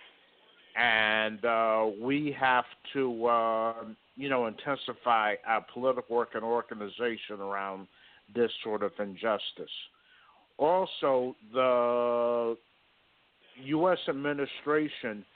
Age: 50-69